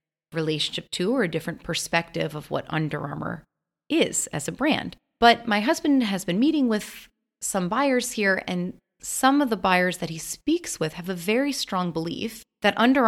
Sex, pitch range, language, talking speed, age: female, 170-240 Hz, English, 185 wpm, 30-49